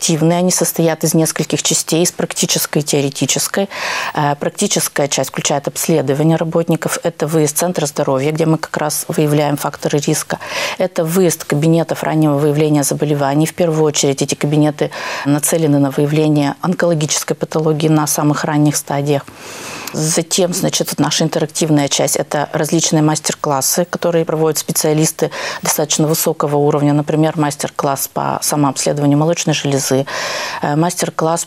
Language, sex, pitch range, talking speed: Russian, female, 150-170 Hz, 125 wpm